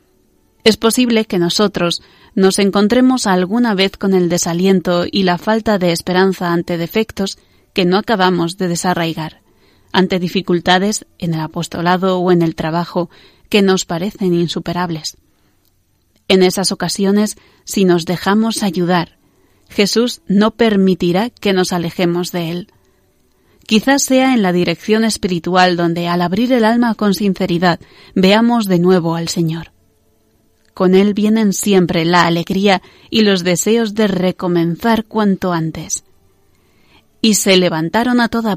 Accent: Spanish